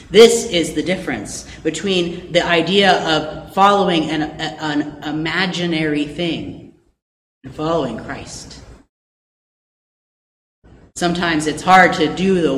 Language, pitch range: English, 160-200 Hz